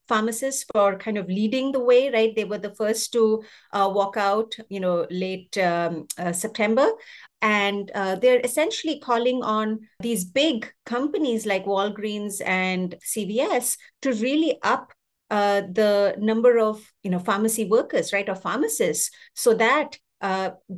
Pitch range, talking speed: 190-230 Hz, 150 wpm